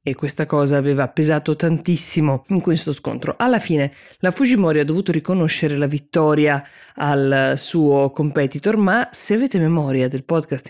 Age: 20-39